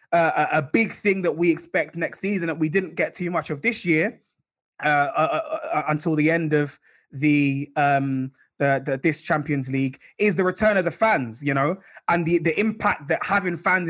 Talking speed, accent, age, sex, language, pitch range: 205 wpm, British, 20-39, male, English, 150-175 Hz